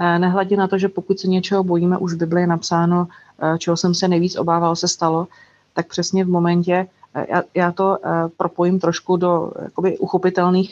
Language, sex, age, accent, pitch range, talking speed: Czech, female, 30-49, native, 170-185 Hz, 180 wpm